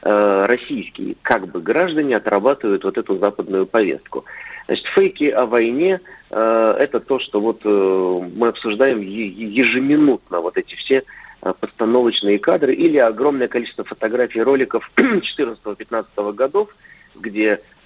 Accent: native